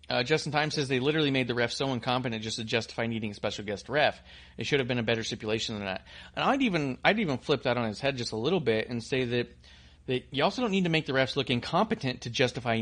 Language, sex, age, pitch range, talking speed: English, male, 30-49, 115-155 Hz, 270 wpm